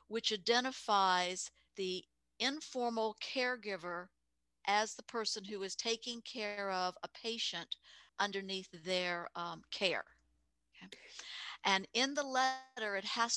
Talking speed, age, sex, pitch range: 110 wpm, 50-69, female, 190-235 Hz